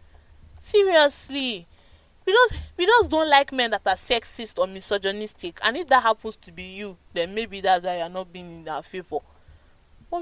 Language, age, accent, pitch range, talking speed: English, 20-39, Nigerian, 180-275 Hz, 180 wpm